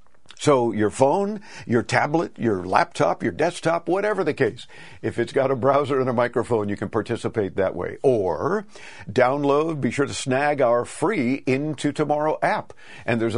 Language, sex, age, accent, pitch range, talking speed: English, male, 50-69, American, 115-150 Hz, 170 wpm